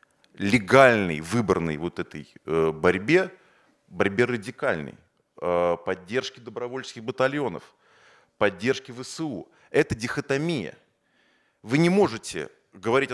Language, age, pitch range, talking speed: Russian, 30-49, 105-155 Hz, 85 wpm